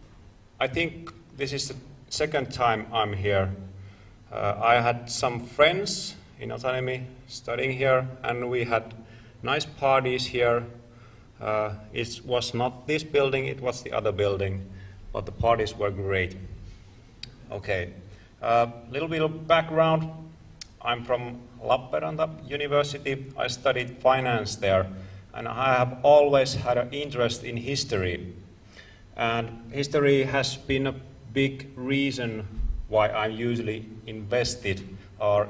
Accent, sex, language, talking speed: native, male, Finnish, 130 wpm